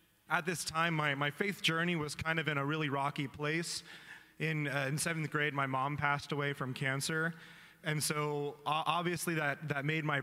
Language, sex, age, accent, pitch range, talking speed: English, male, 30-49, American, 140-160 Hz, 200 wpm